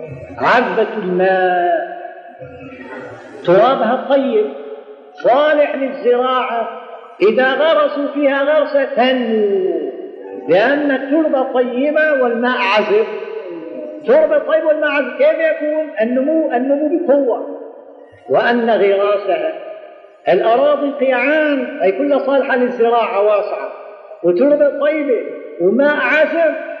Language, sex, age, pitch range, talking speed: Arabic, male, 50-69, 230-310 Hz, 85 wpm